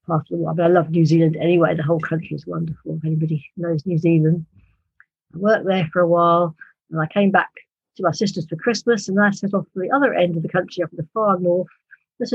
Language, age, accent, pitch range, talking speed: English, 60-79, British, 160-190 Hz, 250 wpm